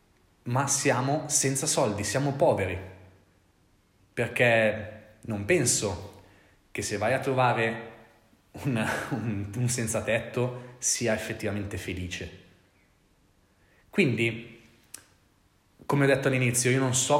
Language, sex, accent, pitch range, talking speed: Italian, male, native, 105-130 Hz, 100 wpm